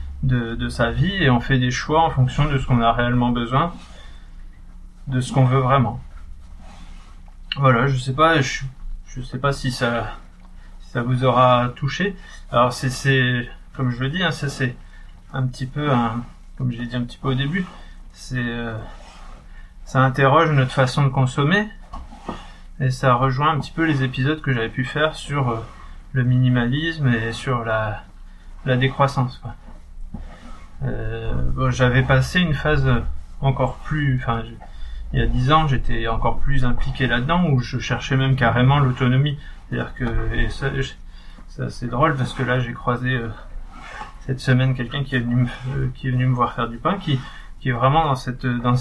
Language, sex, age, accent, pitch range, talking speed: French, male, 20-39, French, 120-135 Hz, 185 wpm